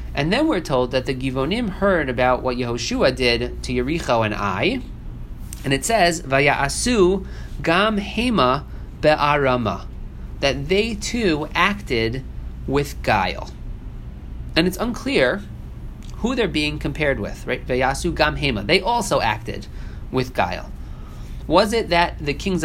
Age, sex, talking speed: 40-59, male, 130 wpm